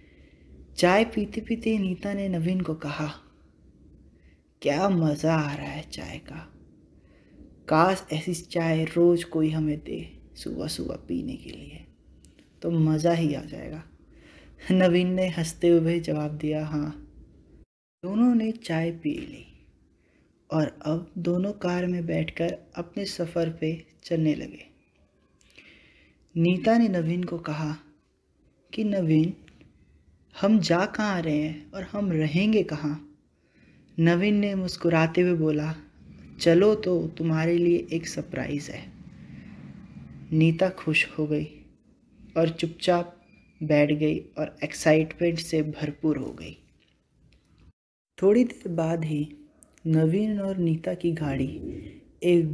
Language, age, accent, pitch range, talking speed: Hindi, 20-39, native, 150-180 Hz, 125 wpm